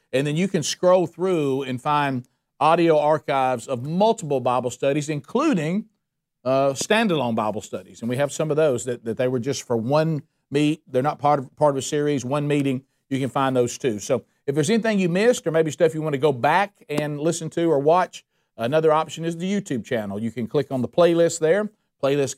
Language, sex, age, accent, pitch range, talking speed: English, male, 50-69, American, 130-165 Hz, 215 wpm